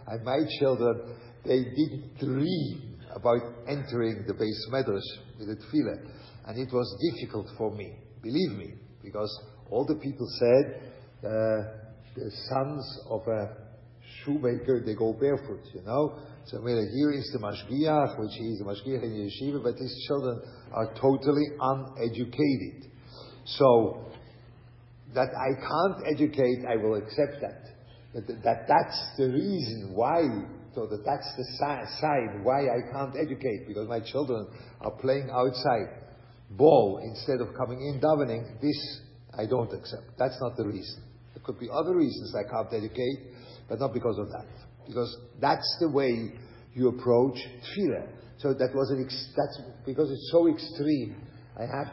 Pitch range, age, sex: 115-140 Hz, 50-69, male